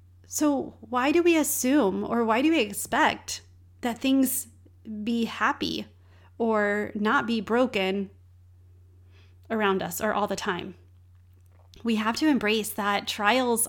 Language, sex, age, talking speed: English, female, 30-49, 130 wpm